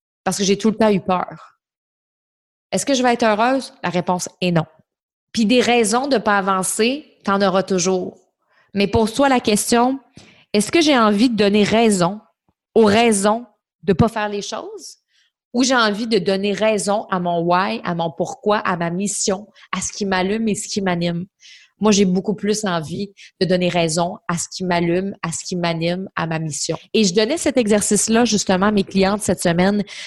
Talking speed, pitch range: 200 wpm, 185-225 Hz